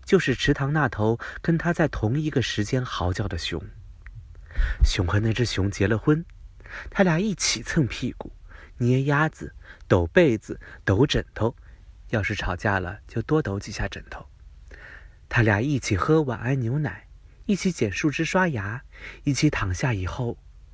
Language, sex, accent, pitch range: Chinese, male, native, 80-125 Hz